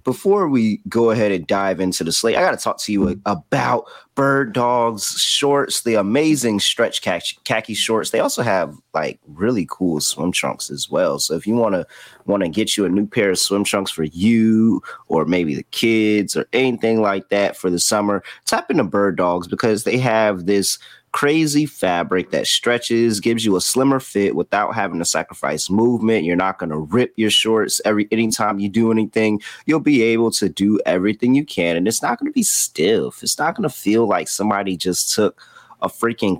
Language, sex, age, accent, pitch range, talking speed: English, male, 30-49, American, 100-140 Hz, 200 wpm